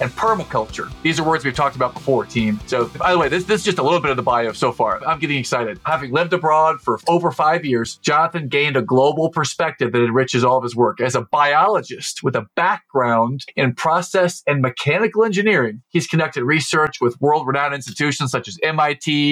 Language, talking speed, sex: English, 210 wpm, male